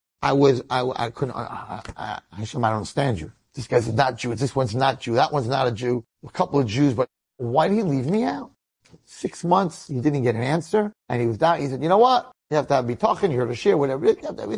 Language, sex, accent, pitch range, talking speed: English, male, American, 115-150 Hz, 285 wpm